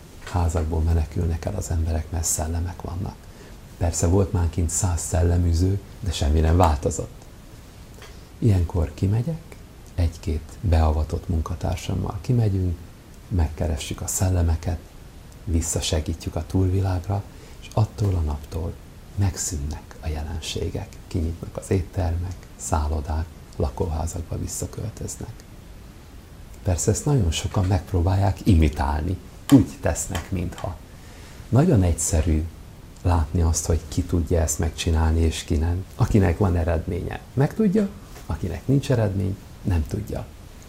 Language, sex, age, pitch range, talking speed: Hungarian, male, 60-79, 80-100 Hz, 110 wpm